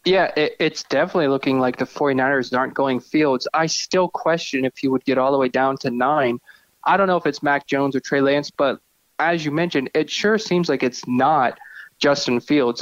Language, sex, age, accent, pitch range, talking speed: English, male, 20-39, American, 130-155 Hz, 210 wpm